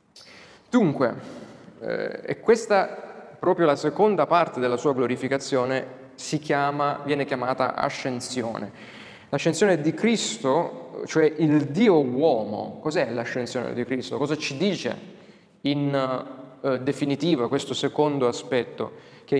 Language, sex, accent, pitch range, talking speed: Italian, male, native, 130-165 Hz, 115 wpm